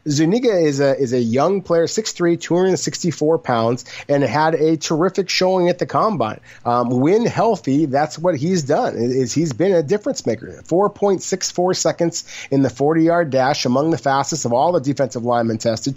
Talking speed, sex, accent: 180 wpm, male, American